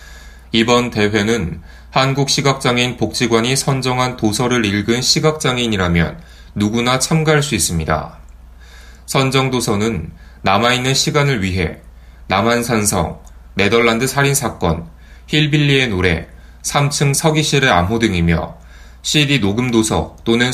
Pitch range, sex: 85-130 Hz, male